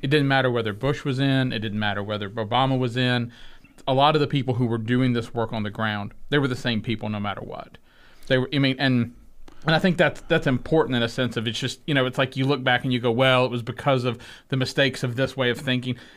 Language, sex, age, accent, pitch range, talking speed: English, male, 40-59, American, 120-155 Hz, 275 wpm